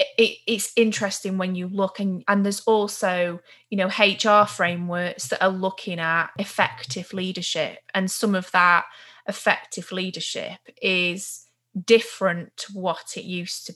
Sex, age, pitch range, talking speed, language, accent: female, 20-39, 170-205 Hz, 140 wpm, English, British